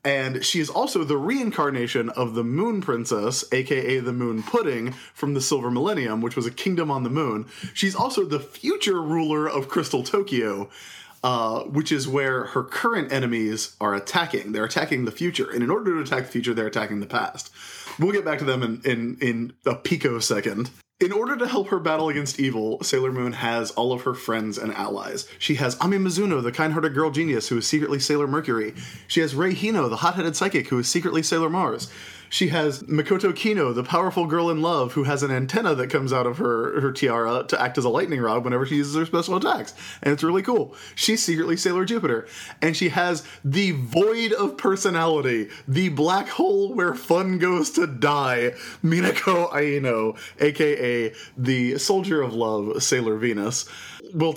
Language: English